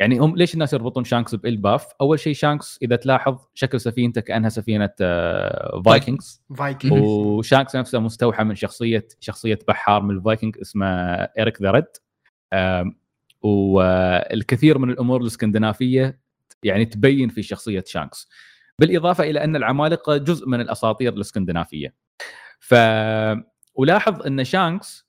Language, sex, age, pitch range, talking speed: Arabic, male, 20-39, 110-150 Hz, 120 wpm